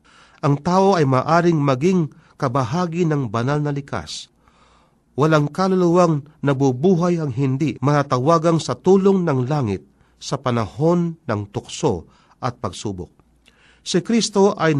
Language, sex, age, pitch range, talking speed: Filipino, male, 40-59, 115-165 Hz, 120 wpm